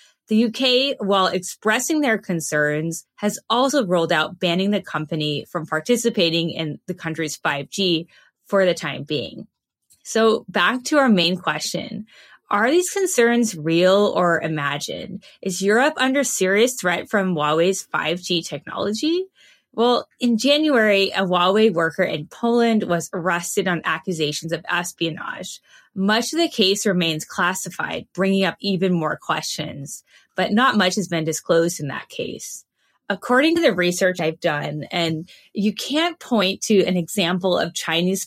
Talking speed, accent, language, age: 145 wpm, American, English, 20-39